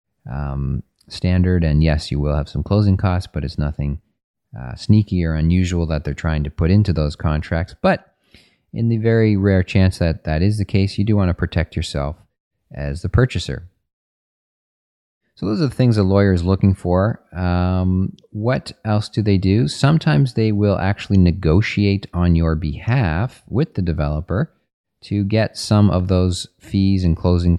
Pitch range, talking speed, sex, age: 80-95 Hz, 170 wpm, male, 30-49